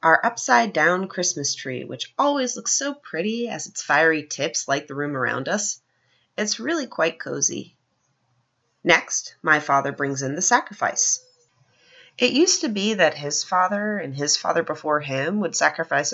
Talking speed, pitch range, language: 160 wpm, 155-255 Hz, English